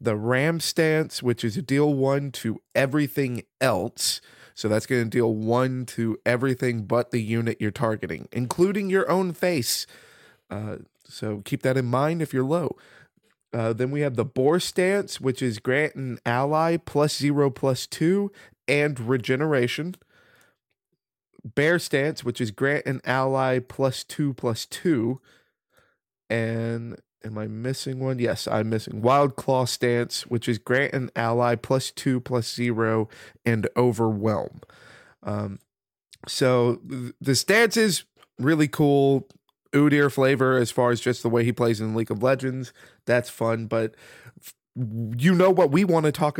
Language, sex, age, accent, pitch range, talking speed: English, male, 20-39, American, 120-145 Hz, 155 wpm